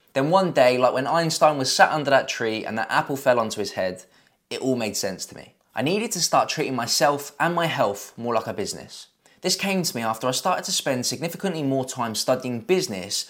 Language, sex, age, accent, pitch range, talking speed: English, male, 20-39, British, 120-170 Hz, 230 wpm